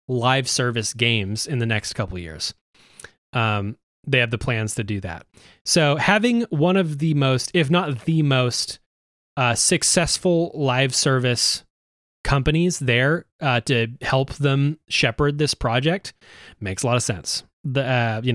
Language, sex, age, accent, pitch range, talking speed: English, male, 20-39, American, 120-150 Hz, 155 wpm